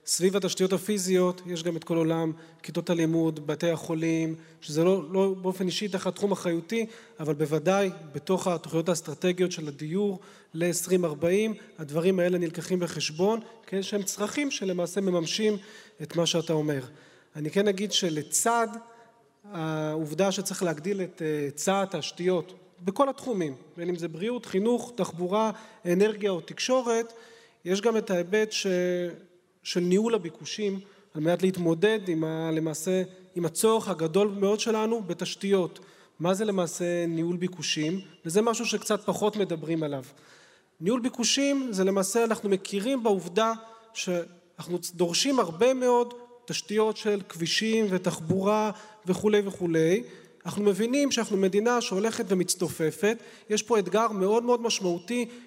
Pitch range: 170-215 Hz